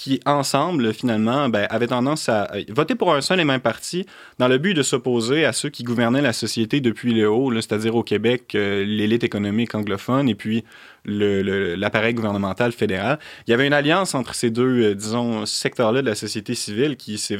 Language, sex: French, male